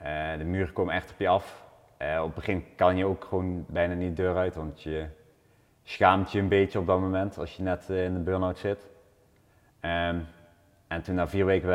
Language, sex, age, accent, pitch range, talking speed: Dutch, male, 30-49, Dutch, 85-95 Hz, 205 wpm